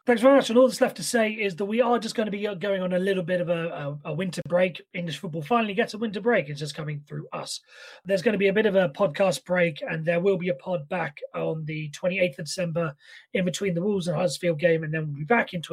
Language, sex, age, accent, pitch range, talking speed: English, male, 30-49, British, 160-200 Hz, 280 wpm